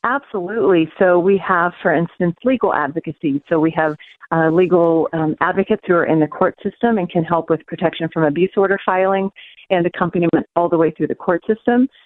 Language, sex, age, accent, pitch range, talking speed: English, female, 40-59, American, 160-200 Hz, 195 wpm